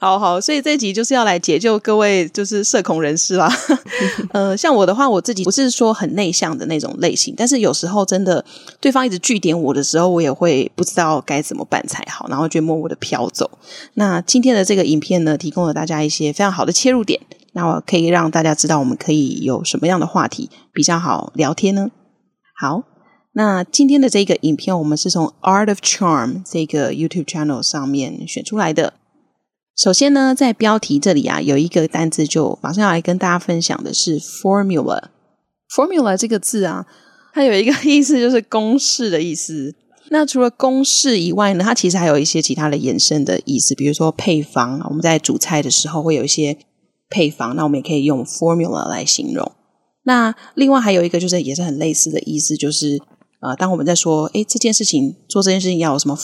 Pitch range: 155-220 Hz